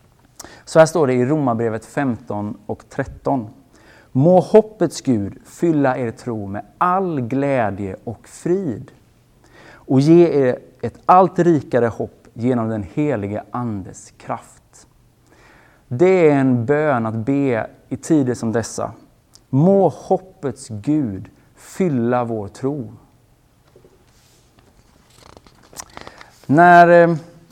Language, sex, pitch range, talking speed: Swedish, male, 115-155 Hz, 105 wpm